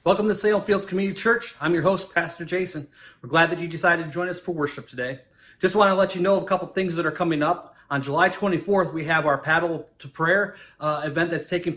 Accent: American